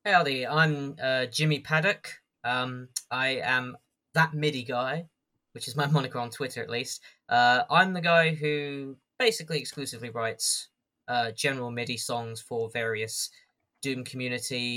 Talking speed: 145 wpm